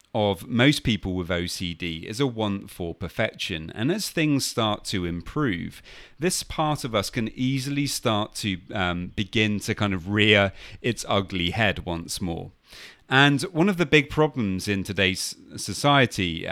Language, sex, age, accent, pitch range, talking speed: English, male, 30-49, British, 95-120 Hz, 160 wpm